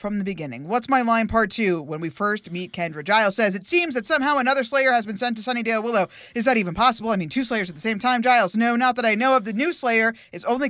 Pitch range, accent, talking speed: 175-245 Hz, American, 285 wpm